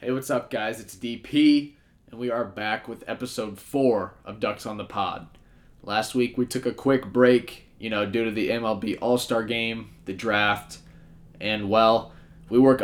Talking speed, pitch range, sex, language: 180 wpm, 105-120 Hz, male, English